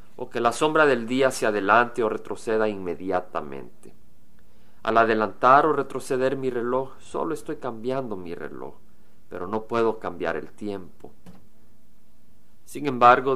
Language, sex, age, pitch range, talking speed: Spanish, male, 40-59, 100-130 Hz, 135 wpm